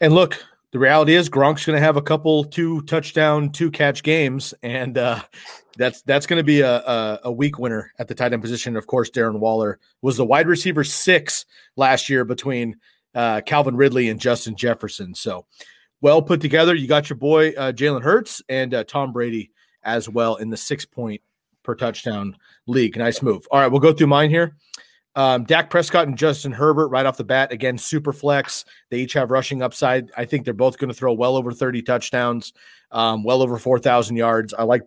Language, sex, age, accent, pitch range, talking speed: English, male, 40-59, American, 120-150 Hz, 200 wpm